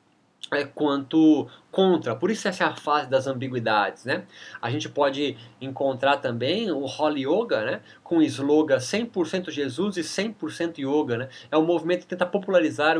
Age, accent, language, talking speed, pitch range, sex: 20-39, Brazilian, Portuguese, 165 wpm, 135-185 Hz, male